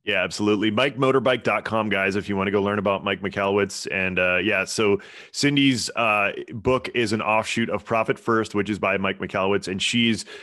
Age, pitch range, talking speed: 30-49, 95-110 Hz, 190 wpm